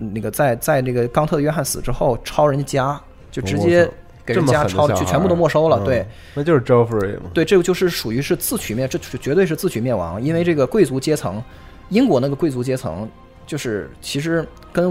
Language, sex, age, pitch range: Chinese, male, 20-39, 120-175 Hz